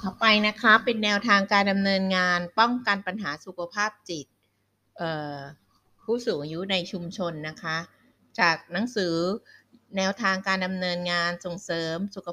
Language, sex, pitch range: Thai, female, 165-205 Hz